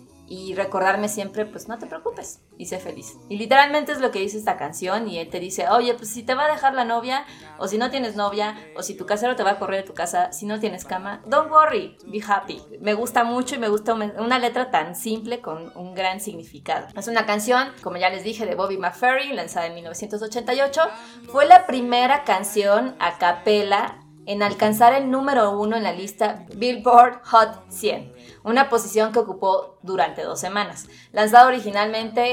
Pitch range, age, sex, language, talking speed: 185-235 Hz, 20-39, female, Spanish, 200 wpm